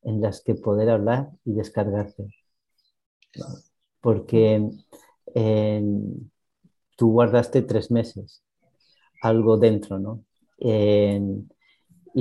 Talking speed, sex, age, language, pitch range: 85 wpm, male, 40-59, Spanish, 105-120 Hz